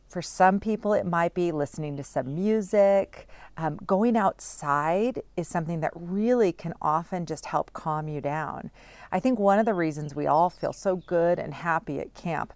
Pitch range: 155-200 Hz